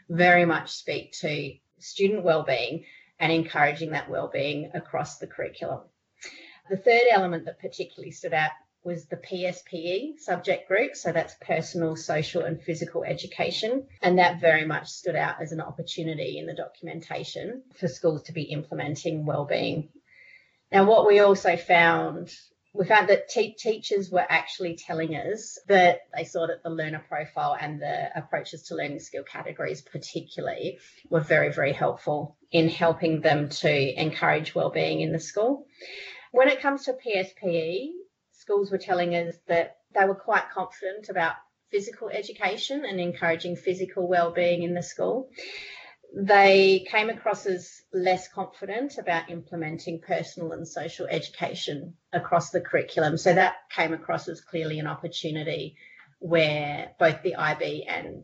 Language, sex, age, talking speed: English, female, 30-49, 145 wpm